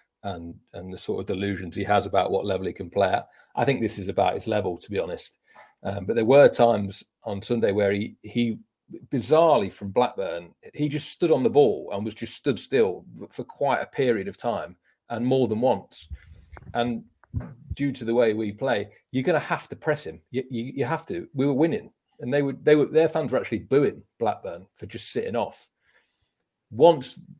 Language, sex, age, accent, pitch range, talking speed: English, male, 40-59, British, 105-135 Hz, 210 wpm